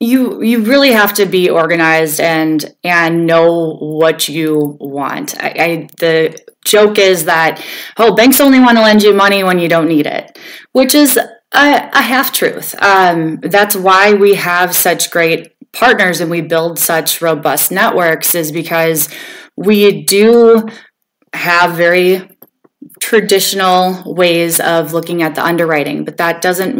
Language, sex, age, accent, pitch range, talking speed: English, female, 20-39, American, 165-215 Hz, 150 wpm